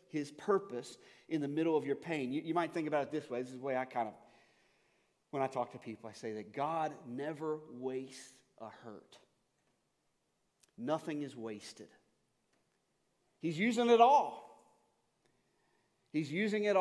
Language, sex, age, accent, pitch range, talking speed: English, male, 40-59, American, 125-160 Hz, 165 wpm